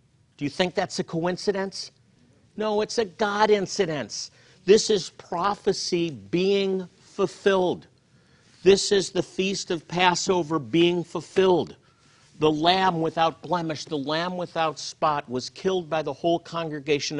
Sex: male